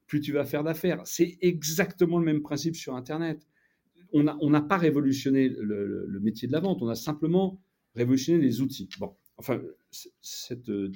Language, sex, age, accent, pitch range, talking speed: French, male, 40-59, French, 110-150 Hz, 185 wpm